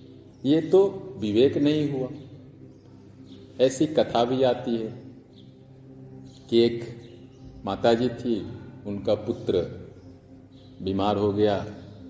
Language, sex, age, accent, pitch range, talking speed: Hindi, male, 50-69, native, 100-130 Hz, 95 wpm